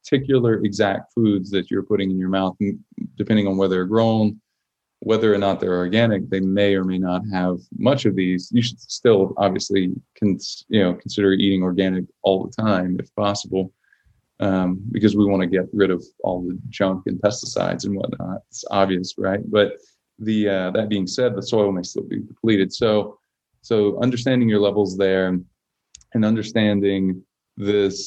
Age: 30-49